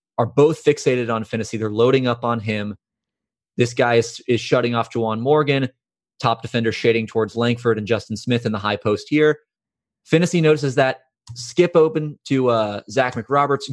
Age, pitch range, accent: 20-39, 115-140 Hz, American